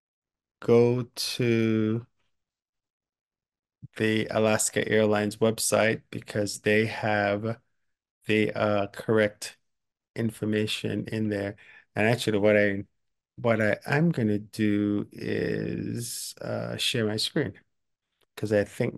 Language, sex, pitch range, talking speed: English, male, 105-115 Hz, 100 wpm